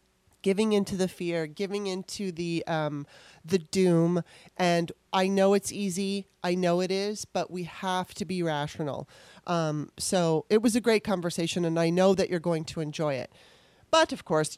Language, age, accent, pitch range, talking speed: English, 30-49, American, 160-195 Hz, 180 wpm